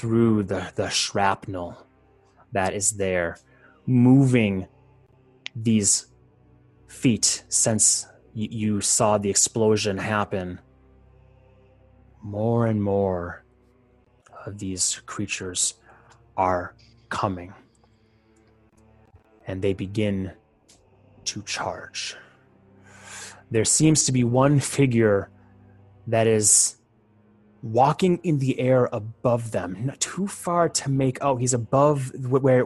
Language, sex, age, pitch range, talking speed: English, male, 30-49, 100-125 Hz, 95 wpm